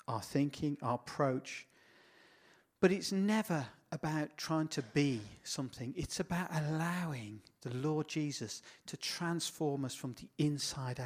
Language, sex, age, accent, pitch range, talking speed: Danish, male, 50-69, British, 130-160 Hz, 130 wpm